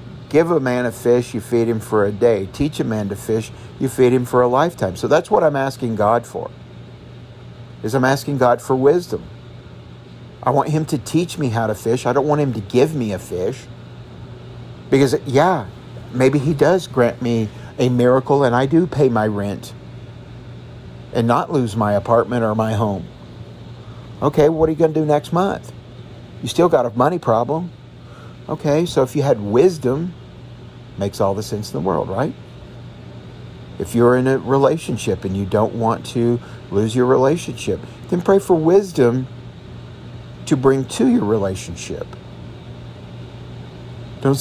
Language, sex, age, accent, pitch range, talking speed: English, male, 50-69, American, 115-145 Hz, 175 wpm